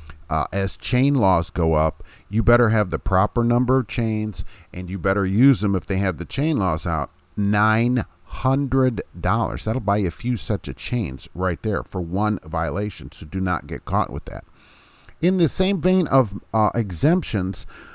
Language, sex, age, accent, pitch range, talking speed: English, male, 50-69, American, 90-125 Hz, 180 wpm